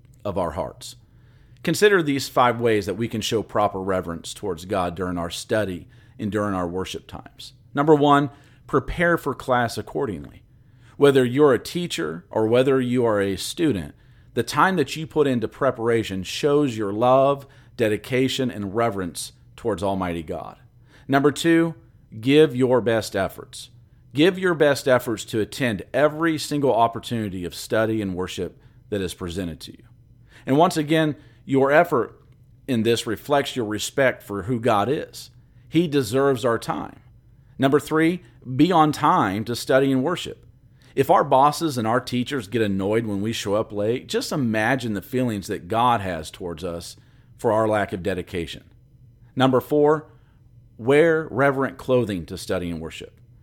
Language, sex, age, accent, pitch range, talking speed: English, male, 40-59, American, 110-135 Hz, 160 wpm